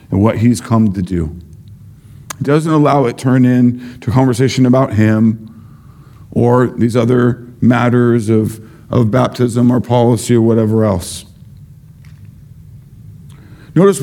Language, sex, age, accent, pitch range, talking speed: English, male, 50-69, American, 115-140 Hz, 135 wpm